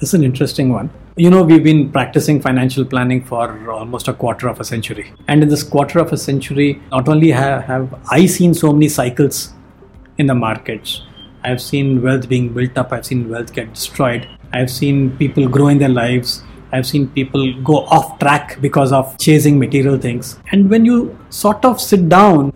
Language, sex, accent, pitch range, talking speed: English, male, Indian, 125-150 Hz, 195 wpm